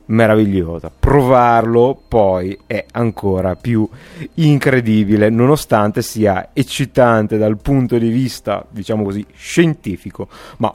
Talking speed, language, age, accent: 100 wpm, Italian, 30-49, native